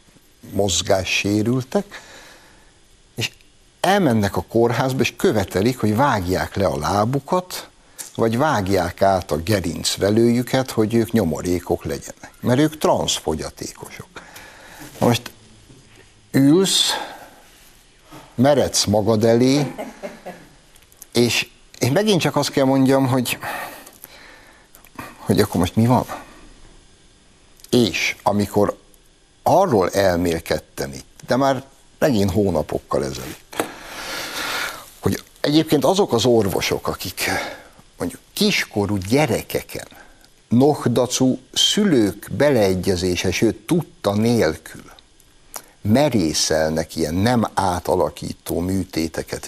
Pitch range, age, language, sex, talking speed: 95-130 Hz, 60-79, Hungarian, male, 90 wpm